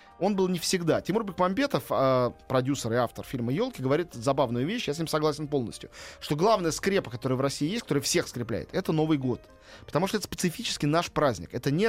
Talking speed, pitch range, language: 200 wpm, 130-180 Hz, Russian